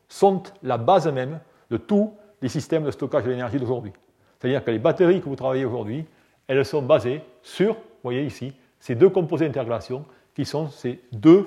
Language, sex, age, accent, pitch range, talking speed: French, male, 40-59, French, 125-170 Hz, 190 wpm